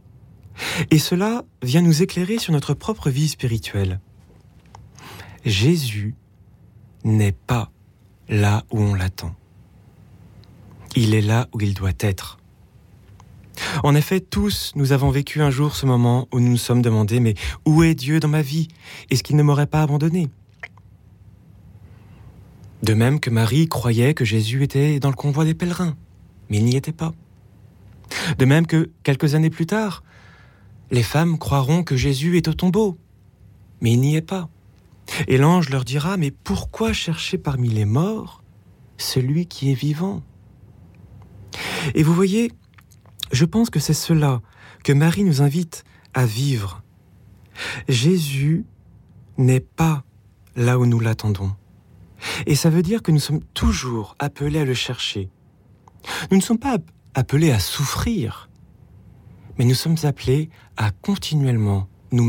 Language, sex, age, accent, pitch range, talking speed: French, male, 30-49, French, 100-150 Hz, 145 wpm